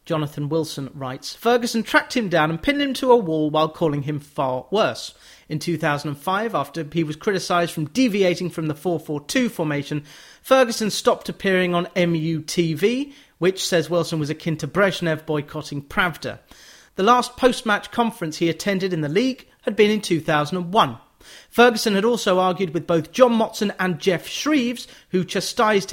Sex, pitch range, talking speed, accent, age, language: male, 155-215 Hz, 160 wpm, British, 30-49, English